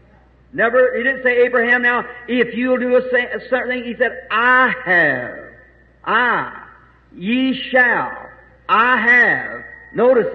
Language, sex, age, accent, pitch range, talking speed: English, male, 50-69, American, 235-260 Hz, 135 wpm